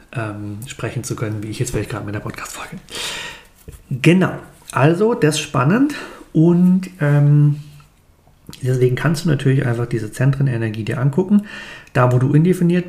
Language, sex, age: German, male, 40-59